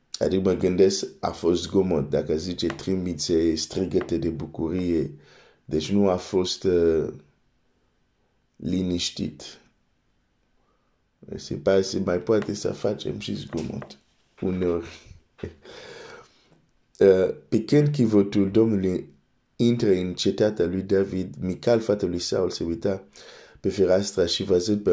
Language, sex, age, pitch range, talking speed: Romanian, male, 50-69, 85-105 Hz, 105 wpm